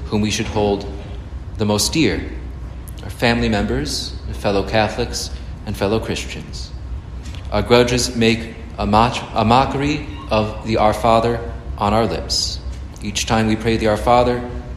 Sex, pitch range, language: male, 90-115 Hz, English